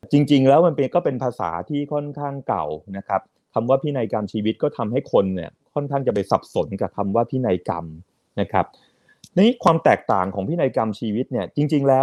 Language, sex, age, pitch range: Thai, male, 30-49, 105-145 Hz